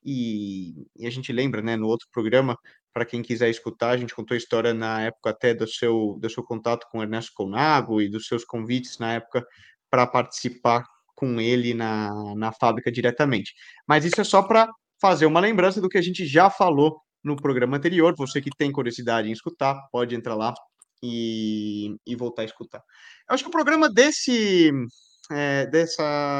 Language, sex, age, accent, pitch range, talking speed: Portuguese, male, 20-39, Brazilian, 120-170 Hz, 190 wpm